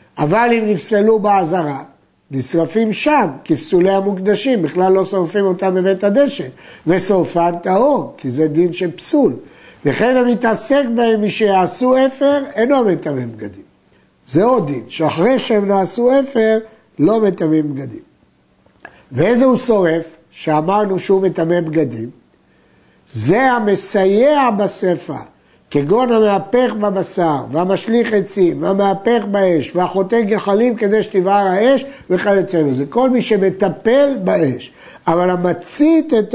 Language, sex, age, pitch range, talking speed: Hebrew, male, 60-79, 170-225 Hz, 115 wpm